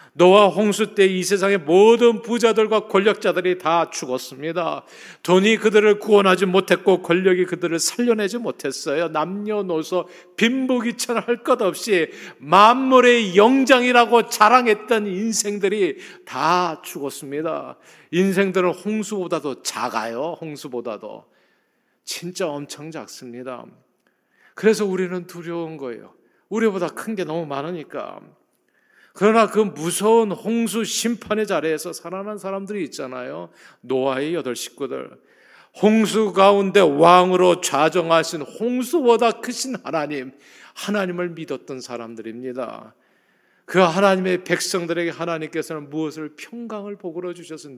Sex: male